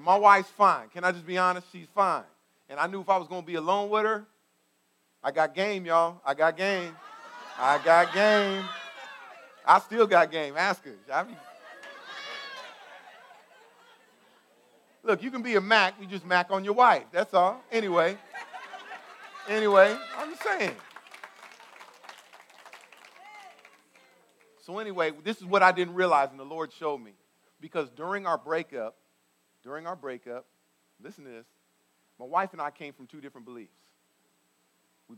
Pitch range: 120-180 Hz